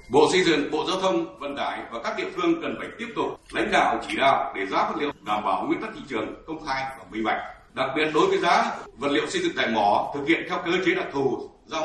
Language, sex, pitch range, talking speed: Vietnamese, male, 195-290 Hz, 275 wpm